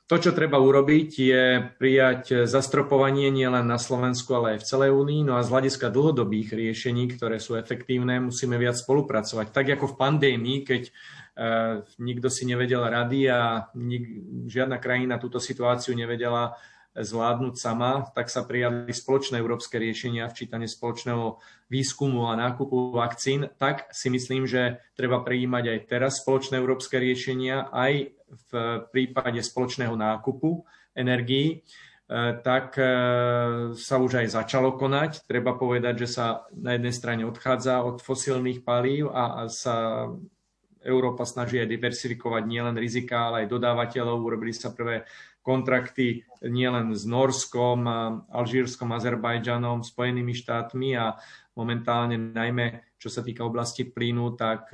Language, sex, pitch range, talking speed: Slovak, male, 120-130 Hz, 135 wpm